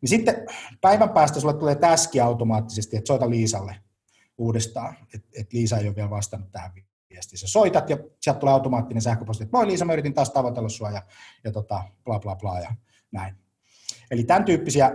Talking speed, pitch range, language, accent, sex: 190 wpm, 105-125 Hz, Finnish, native, male